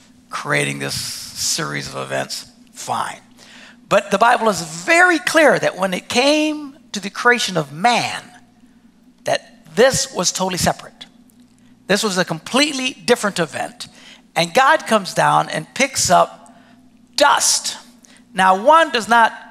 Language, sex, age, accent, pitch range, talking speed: English, male, 60-79, American, 180-245 Hz, 135 wpm